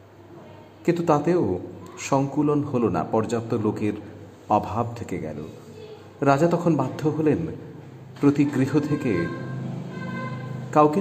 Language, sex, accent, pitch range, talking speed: Bengali, male, native, 105-140 Hz, 95 wpm